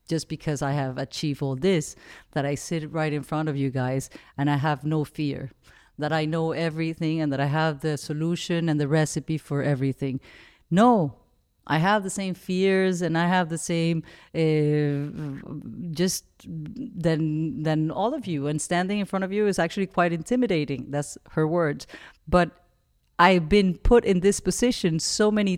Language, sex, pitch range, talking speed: English, female, 150-180 Hz, 180 wpm